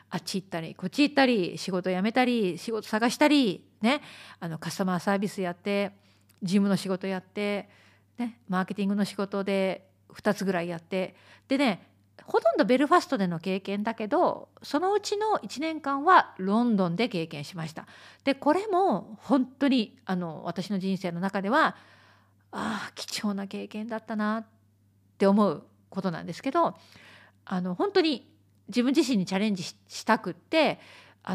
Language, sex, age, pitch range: Japanese, female, 40-59, 180-250 Hz